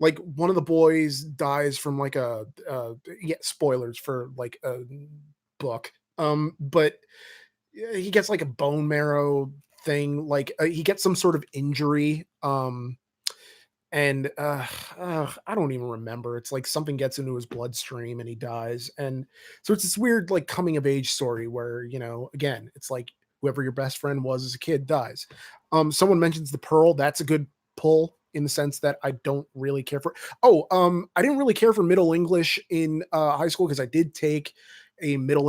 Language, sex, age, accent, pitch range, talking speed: English, male, 30-49, American, 135-165 Hz, 185 wpm